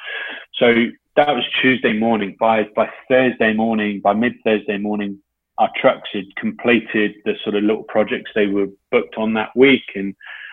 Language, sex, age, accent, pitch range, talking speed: English, male, 30-49, British, 105-120 Hz, 165 wpm